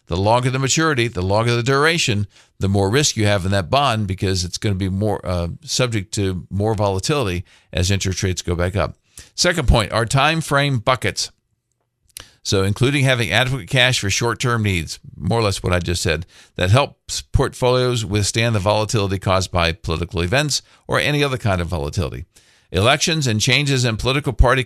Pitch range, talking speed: 95-125 Hz, 185 wpm